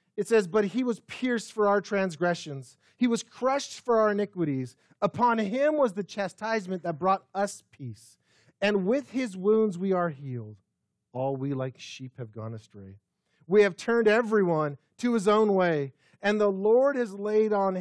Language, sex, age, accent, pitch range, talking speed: English, male, 40-59, American, 130-200 Hz, 175 wpm